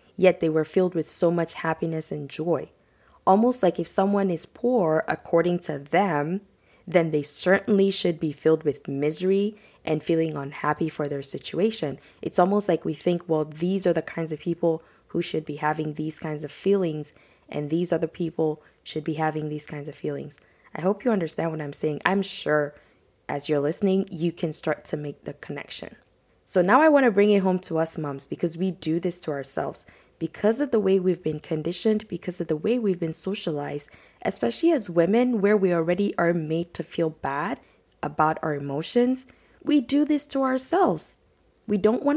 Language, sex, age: English, female, 20-39